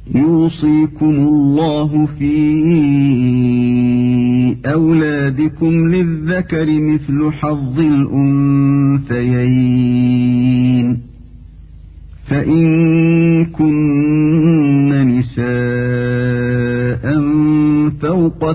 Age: 50-69